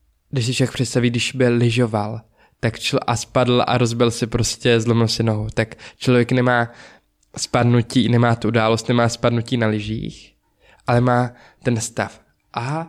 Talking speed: 160 wpm